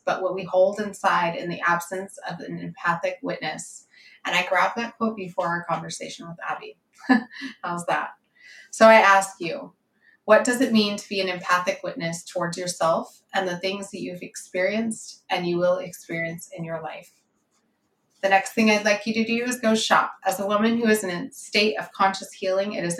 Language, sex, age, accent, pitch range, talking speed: English, female, 20-39, American, 175-210 Hz, 200 wpm